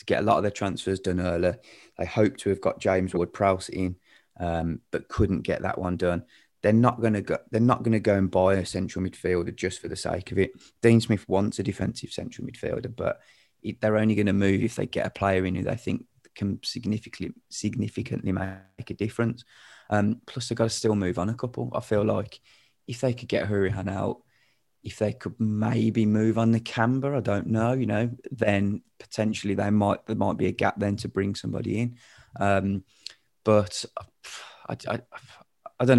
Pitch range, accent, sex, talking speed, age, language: 95-115 Hz, British, male, 210 wpm, 20-39, English